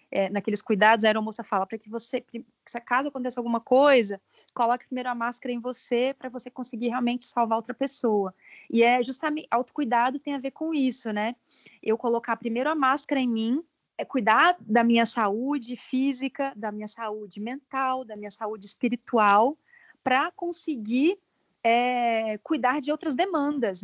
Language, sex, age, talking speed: Portuguese, female, 20-39, 160 wpm